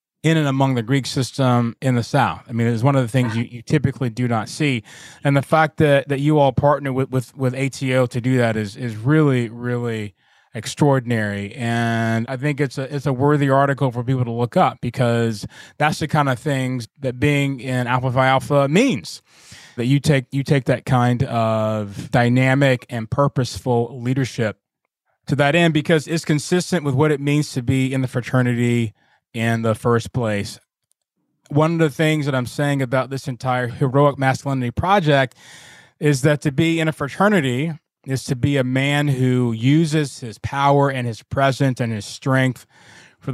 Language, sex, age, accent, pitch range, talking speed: English, male, 20-39, American, 120-140 Hz, 185 wpm